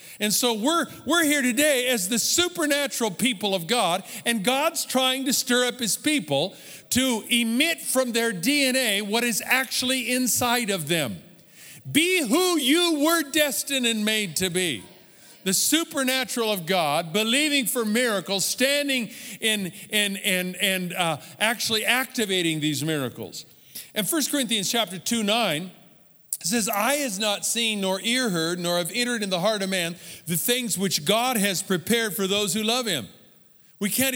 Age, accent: 50-69, American